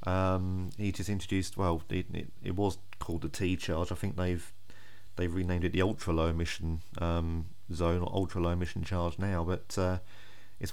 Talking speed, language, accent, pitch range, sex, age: 190 wpm, English, British, 90-105 Hz, male, 30-49